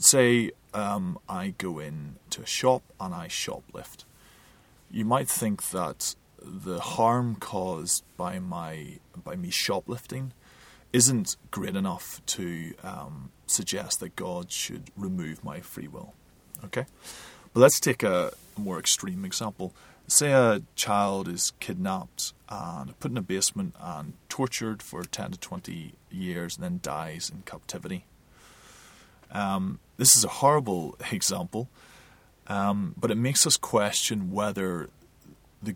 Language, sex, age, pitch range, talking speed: English, male, 30-49, 90-130 Hz, 135 wpm